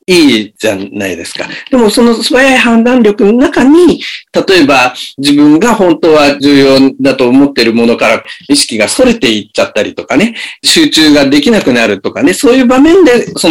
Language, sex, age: Japanese, male, 50-69